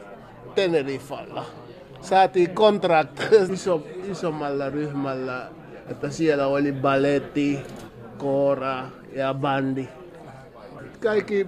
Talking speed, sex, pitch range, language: 70 wpm, male, 140-180 Hz, Finnish